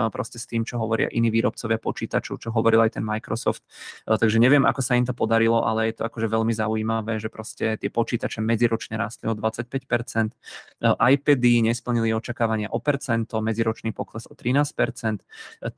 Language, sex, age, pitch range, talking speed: Czech, male, 20-39, 110-120 Hz, 165 wpm